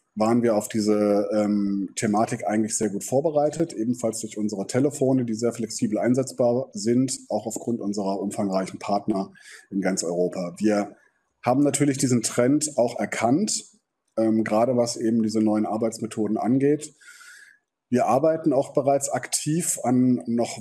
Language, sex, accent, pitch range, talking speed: German, male, German, 110-130 Hz, 145 wpm